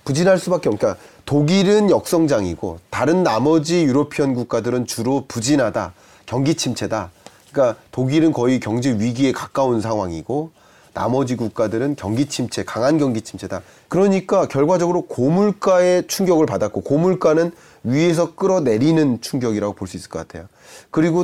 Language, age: Korean, 30-49